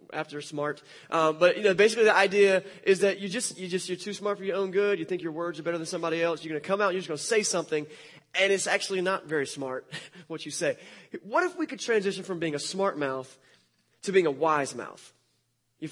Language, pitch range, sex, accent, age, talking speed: English, 155-210 Hz, male, American, 20-39, 255 wpm